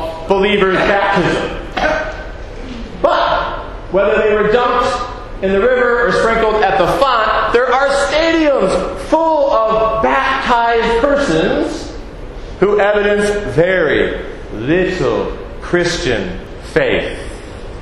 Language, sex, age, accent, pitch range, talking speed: English, male, 40-59, American, 190-245 Hz, 95 wpm